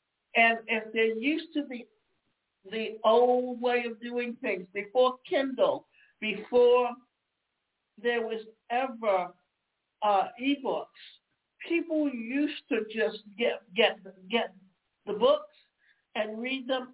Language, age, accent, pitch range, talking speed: English, 60-79, American, 200-245 Hz, 110 wpm